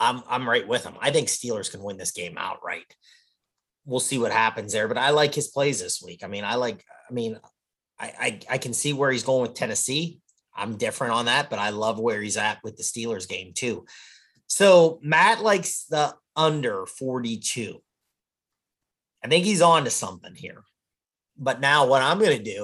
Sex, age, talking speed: male, 30-49, 200 wpm